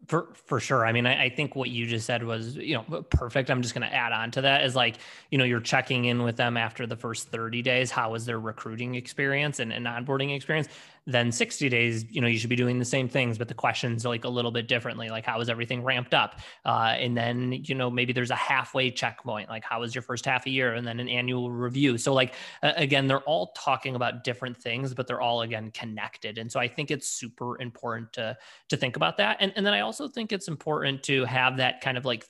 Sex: male